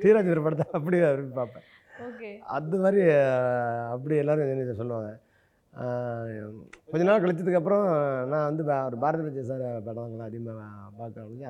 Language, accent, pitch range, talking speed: Tamil, native, 115-160 Hz, 105 wpm